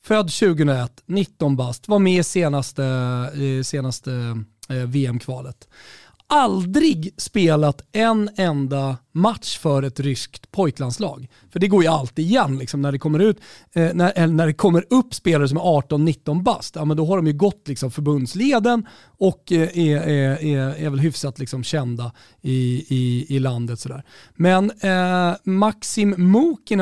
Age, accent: 40-59, native